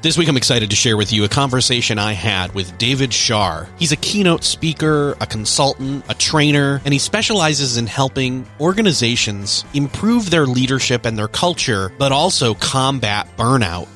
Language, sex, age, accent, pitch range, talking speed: English, male, 30-49, American, 110-145 Hz, 170 wpm